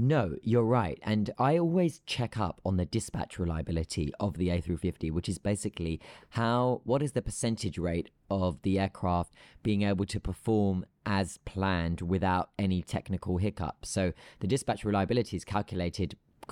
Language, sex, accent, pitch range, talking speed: English, male, British, 95-120 Hz, 170 wpm